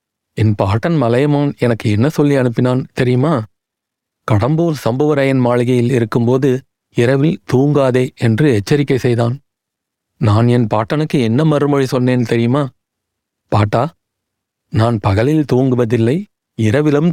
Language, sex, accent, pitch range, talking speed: Tamil, male, native, 115-145 Hz, 100 wpm